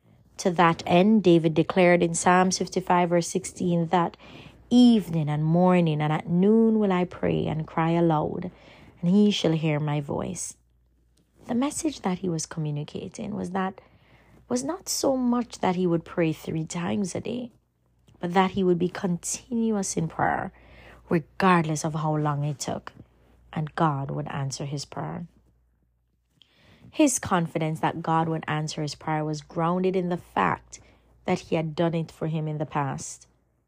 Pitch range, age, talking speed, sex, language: 155-190 Hz, 30-49, 165 wpm, female, English